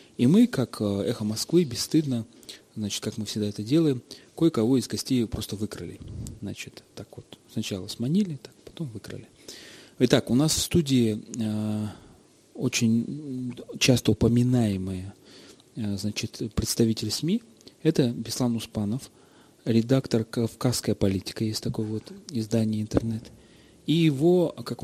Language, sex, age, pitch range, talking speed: Russian, male, 30-49, 105-130 Hz, 125 wpm